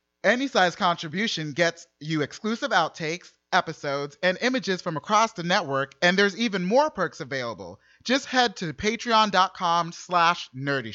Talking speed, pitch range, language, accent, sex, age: 145 wpm, 160-205 Hz, English, American, male, 30-49